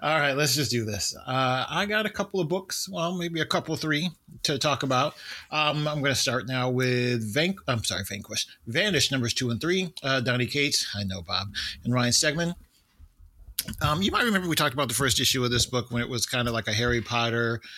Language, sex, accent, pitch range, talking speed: English, male, American, 115-145 Hz, 225 wpm